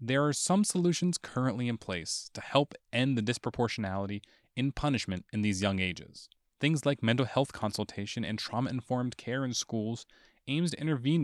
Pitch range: 110-150 Hz